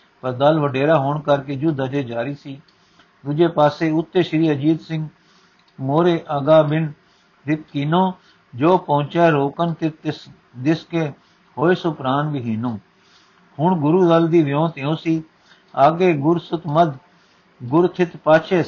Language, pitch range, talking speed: Punjabi, 140-165 Hz, 130 wpm